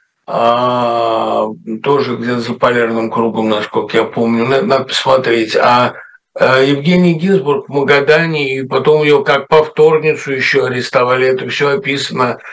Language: Russian